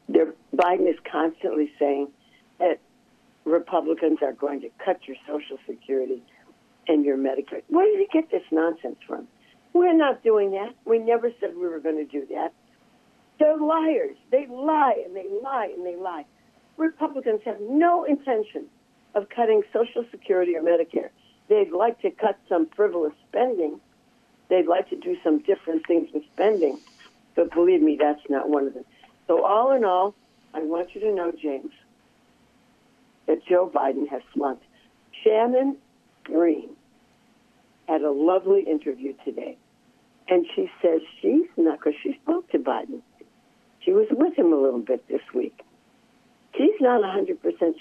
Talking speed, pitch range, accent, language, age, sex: 160 wpm, 160-245 Hz, American, English, 60-79, female